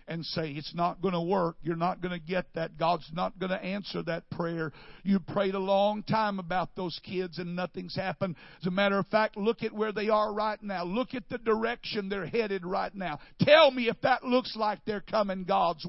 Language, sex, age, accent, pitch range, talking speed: English, male, 60-79, American, 180-230 Hz, 225 wpm